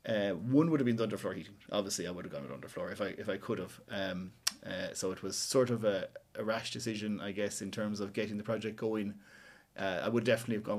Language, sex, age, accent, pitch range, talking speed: English, male, 30-49, Irish, 105-135 Hz, 265 wpm